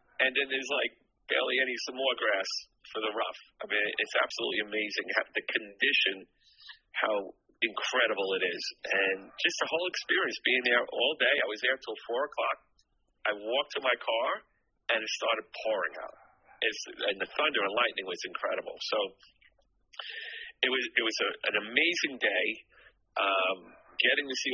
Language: English